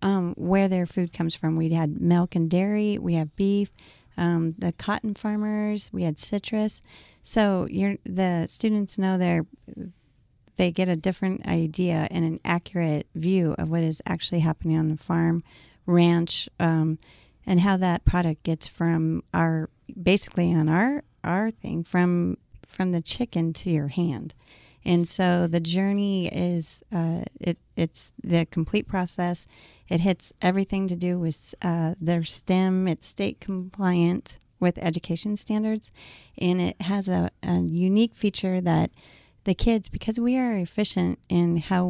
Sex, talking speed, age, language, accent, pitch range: female, 150 wpm, 30-49, English, American, 165-195 Hz